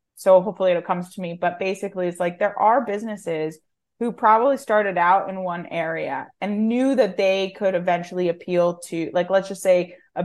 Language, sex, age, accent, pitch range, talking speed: English, female, 20-39, American, 175-205 Hz, 195 wpm